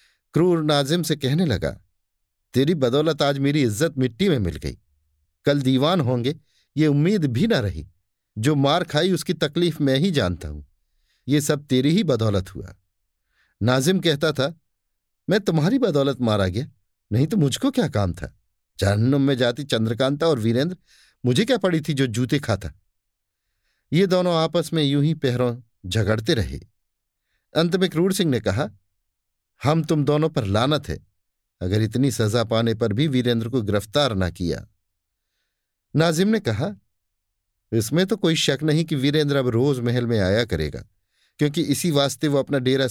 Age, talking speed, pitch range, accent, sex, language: 50-69, 165 wpm, 95-155 Hz, native, male, Hindi